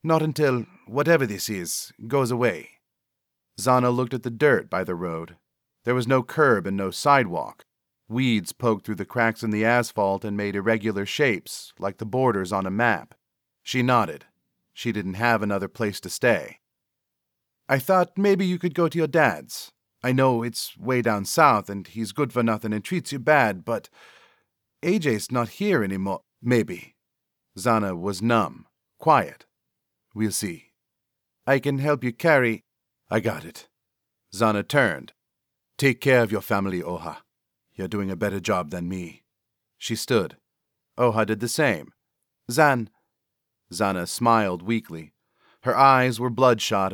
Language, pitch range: English, 100-125 Hz